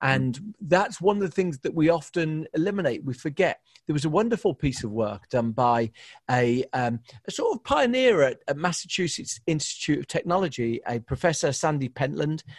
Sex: male